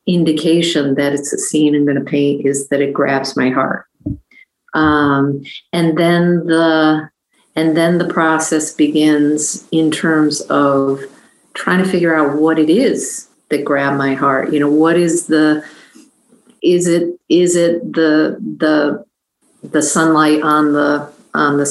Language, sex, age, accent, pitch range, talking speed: English, female, 50-69, American, 145-170 Hz, 150 wpm